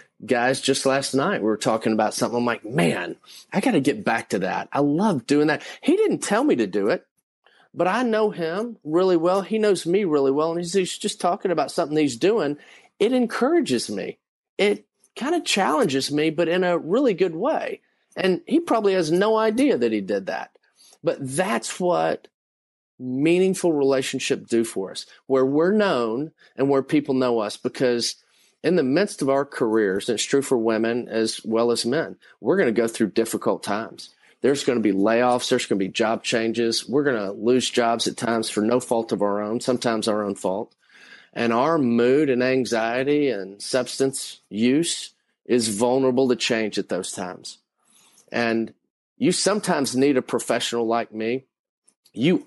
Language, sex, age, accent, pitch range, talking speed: English, male, 40-59, American, 115-165 Hz, 190 wpm